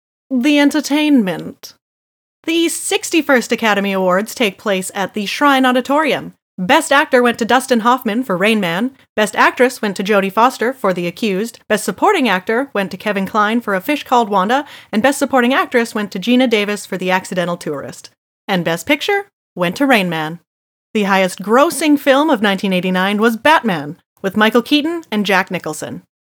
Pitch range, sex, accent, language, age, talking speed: 195-270 Hz, female, American, English, 30-49, 170 wpm